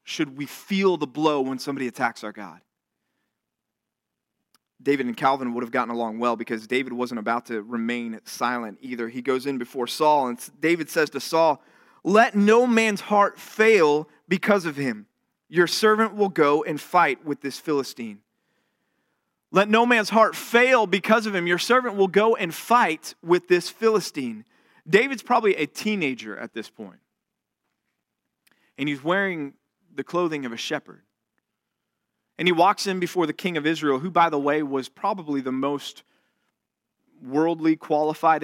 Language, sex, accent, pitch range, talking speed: English, male, American, 135-190 Hz, 160 wpm